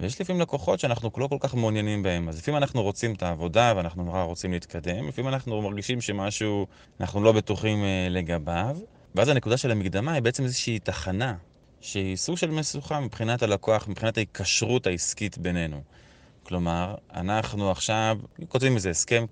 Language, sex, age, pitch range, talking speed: Hebrew, male, 20-39, 95-125 Hz, 160 wpm